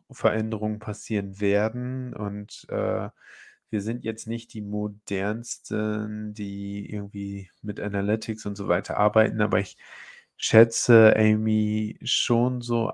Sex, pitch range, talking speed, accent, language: male, 100-110 Hz, 115 wpm, German, German